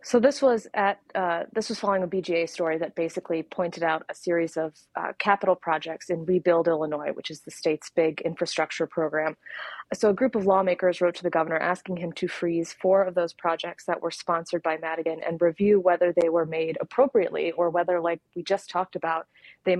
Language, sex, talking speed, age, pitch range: English, female, 205 wpm, 30-49, 165-185 Hz